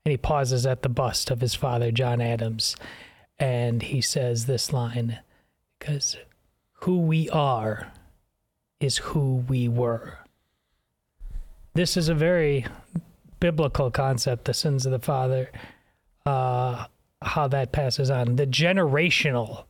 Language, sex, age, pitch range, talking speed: English, male, 30-49, 125-165 Hz, 130 wpm